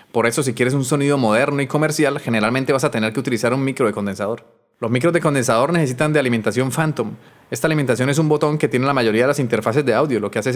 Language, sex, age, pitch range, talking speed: Spanish, male, 30-49, 120-145 Hz, 250 wpm